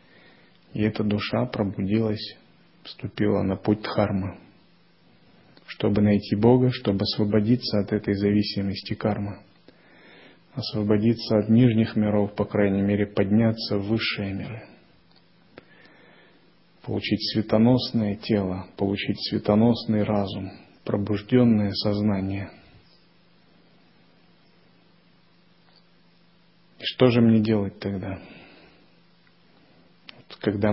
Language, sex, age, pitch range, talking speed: Russian, male, 30-49, 100-115 Hz, 85 wpm